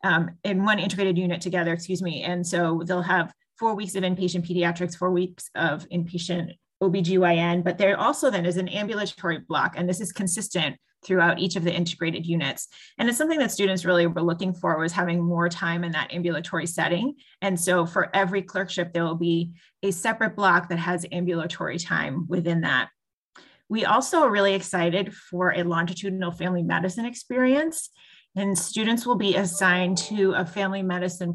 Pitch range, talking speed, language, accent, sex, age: 175-195 Hz, 180 wpm, English, American, female, 30-49